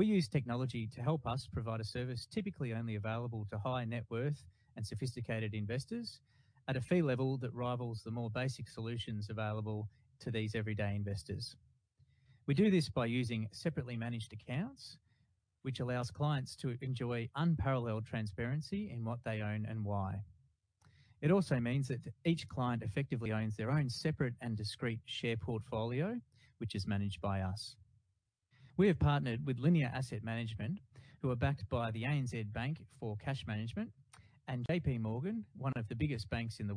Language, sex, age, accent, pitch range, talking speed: English, male, 30-49, Australian, 110-135 Hz, 165 wpm